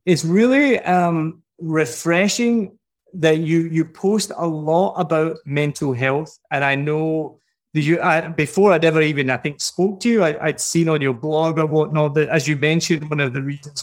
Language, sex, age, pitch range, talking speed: English, male, 30-49, 145-175 Hz, 190 wpm